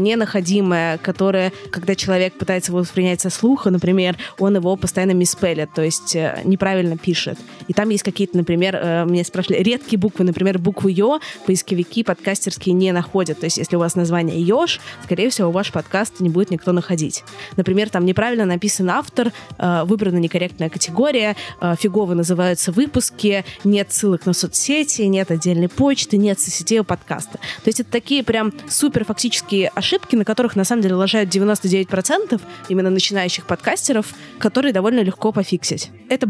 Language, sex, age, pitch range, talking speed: Russian, female, 20-39, 180-220 Hz, 160 wpm